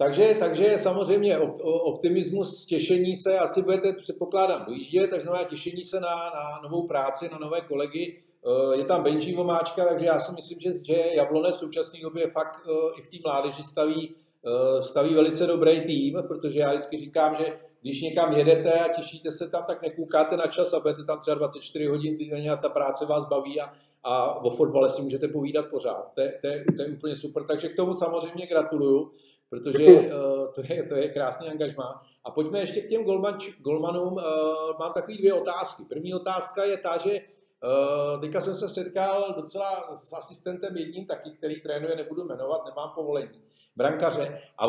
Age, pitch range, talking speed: 50-69, 150-195 Hz, 175 wpm